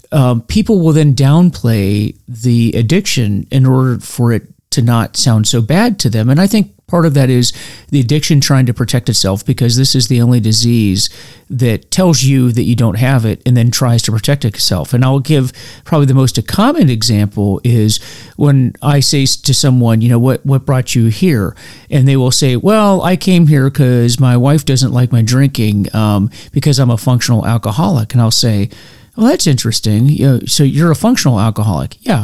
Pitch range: 115-155 Hz